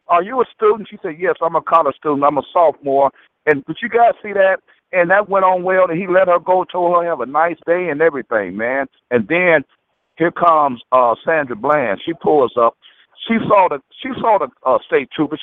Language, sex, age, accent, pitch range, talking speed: English, male, 60-79, American, 150-200 Hz, 225 wpm